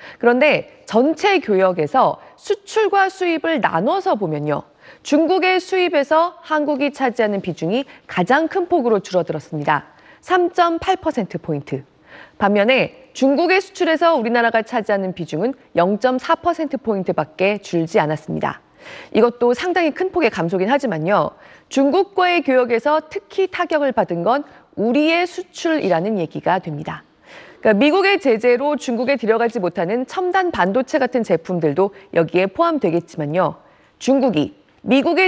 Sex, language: female, Korean